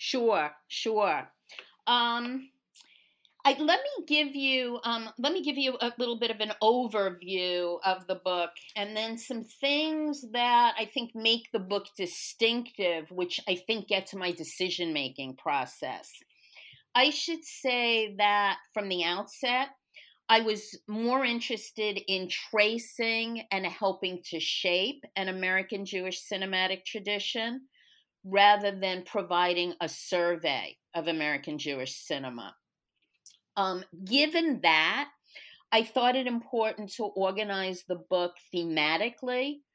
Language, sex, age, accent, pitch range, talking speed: English, female, 40-59, American, 185-245 Hz, 125 wpm